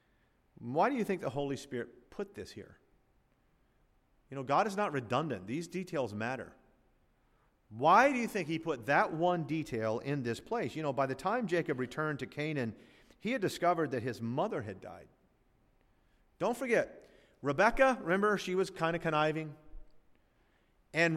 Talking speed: 165 wpm